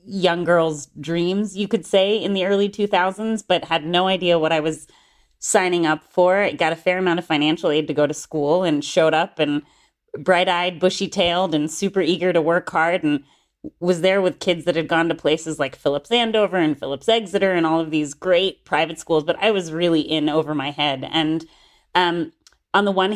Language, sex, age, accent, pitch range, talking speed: English, female, 30-49, American, 155-185 Hz, 210 wpm